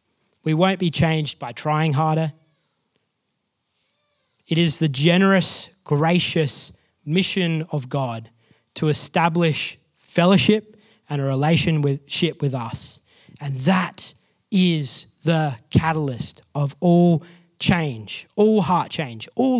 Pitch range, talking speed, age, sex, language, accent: 145-180 Hz, 105 wpm, 20-39, male, English, Australian